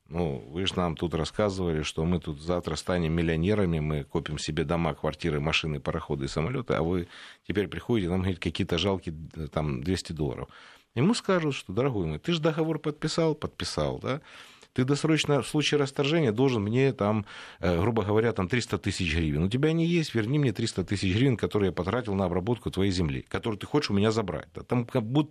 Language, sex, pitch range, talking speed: Russian, male, 90-125 Hz, 195 wpm